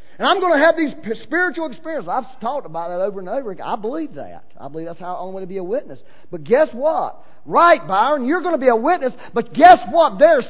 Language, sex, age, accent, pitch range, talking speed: English, male, 40-59, American, 230-320 Hz, 250 wpm